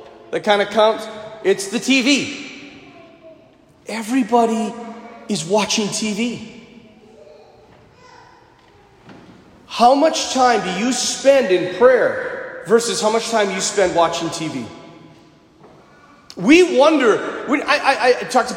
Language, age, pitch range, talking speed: English, 40-59, 215-305 Hz, 115 wpm